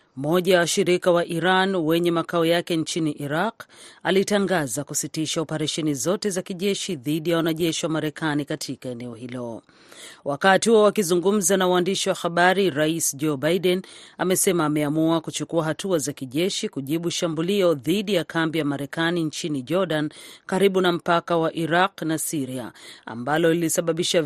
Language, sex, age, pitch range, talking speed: Swahili, female, 40-59, 150-185 Hz, 145 wpm